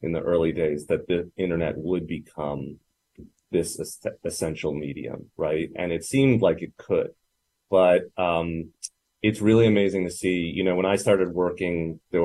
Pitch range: 85-105 Hz